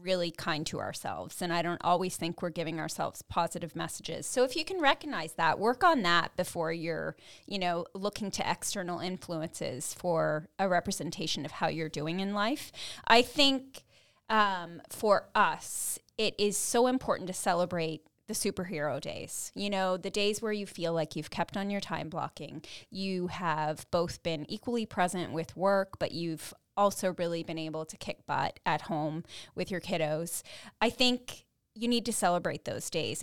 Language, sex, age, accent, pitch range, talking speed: English, female, 20-39, American, 165-210 Hz, 175 wpm